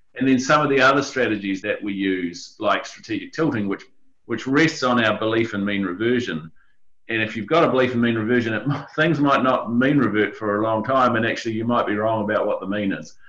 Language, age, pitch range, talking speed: English, 30-49, 100-125 Hz, 230 wpm